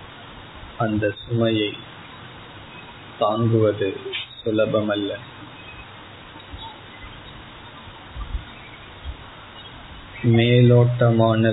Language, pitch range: Tamil, 105-115 Hz